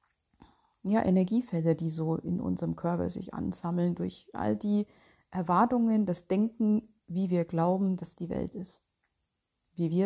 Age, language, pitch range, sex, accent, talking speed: 40-59, German, 165-205 Hz, female, German, 145 wpm